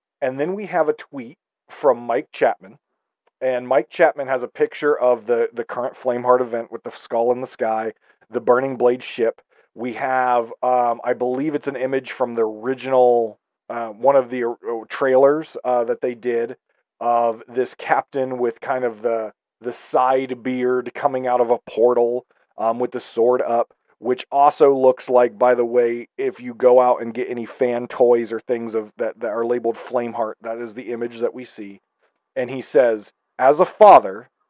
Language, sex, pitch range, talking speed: English, male, 120-140 Hz, 190 wpm